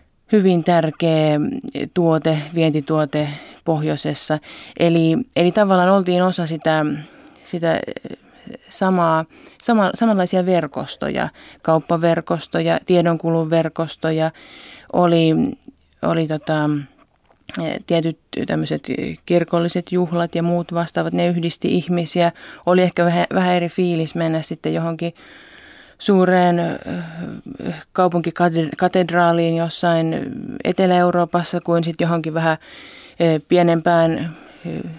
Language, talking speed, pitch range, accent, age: Finnish, 80 wpm, 160-185 Hz, native, 20-39